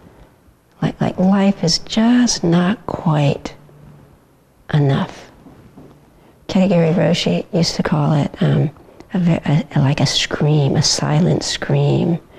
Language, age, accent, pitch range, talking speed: English, 50-69, American, 155-195 Hz, 125 wpm